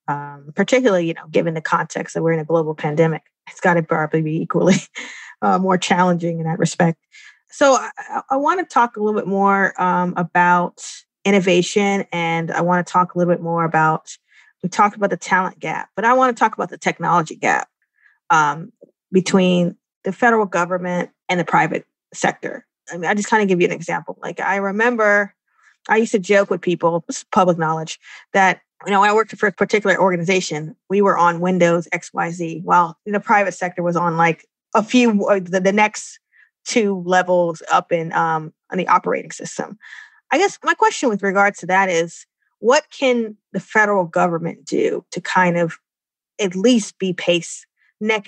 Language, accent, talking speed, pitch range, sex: English, American, 190 wpm, 175-220 Hz, female